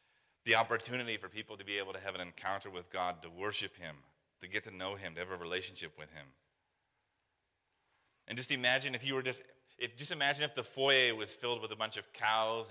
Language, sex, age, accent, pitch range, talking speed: English, male, 30-49, American, 100-120 Hz, 220 wpm